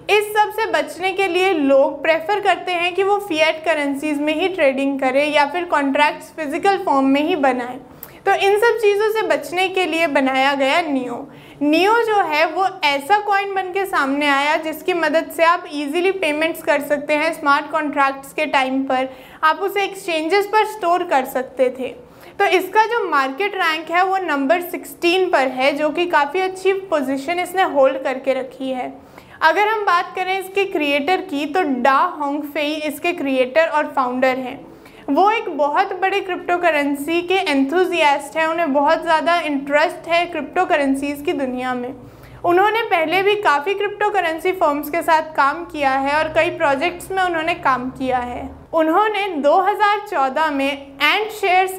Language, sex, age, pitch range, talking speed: Hindi, female, 20-39, 280-370 Hz, 170 wpm